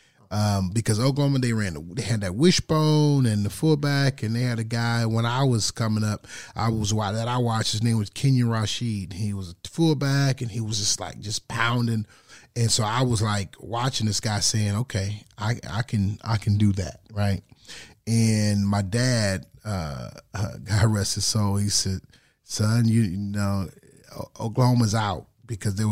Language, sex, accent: English, male, American